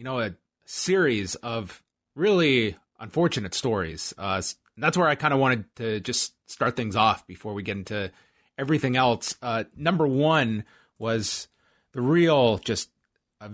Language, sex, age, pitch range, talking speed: English, male, 30-49, 105-130 Hz, 150 wpm